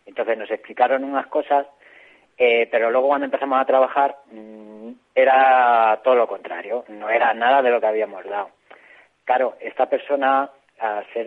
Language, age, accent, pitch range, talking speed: Spanish, 30-49, Spanish, 115-140 Hz, 160 wpm